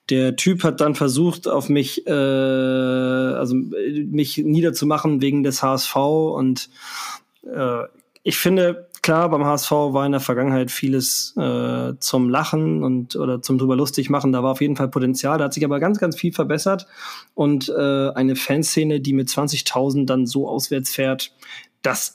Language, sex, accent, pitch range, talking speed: German, male, German, 135-175 Hz, 165 wpm